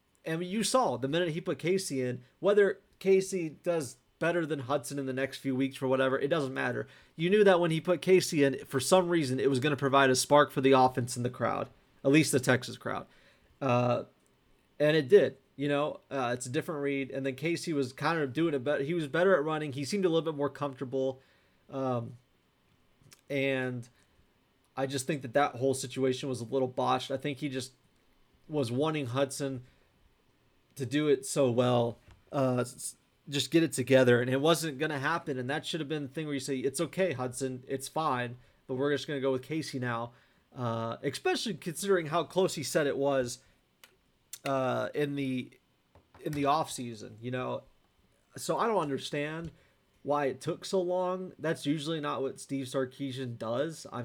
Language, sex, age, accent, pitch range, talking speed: English, male, 30-49, American, 130-155 Hz, 200 wpm